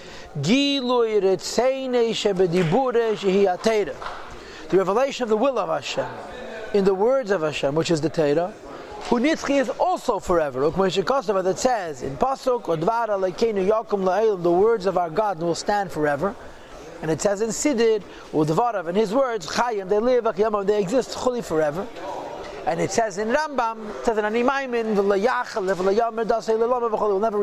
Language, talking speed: English, 115 wpm